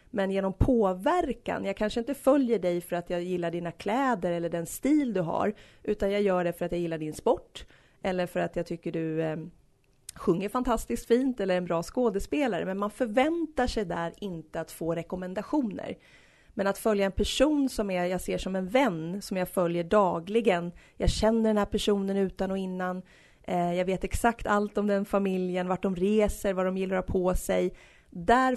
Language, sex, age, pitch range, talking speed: Swedish, female, 30-49, 175-220 Hz, 195 wpm